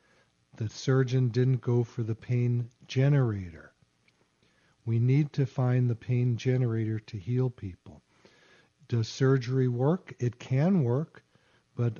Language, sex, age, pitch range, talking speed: English, male, 50-69, 110-130 Hz, 125 wpm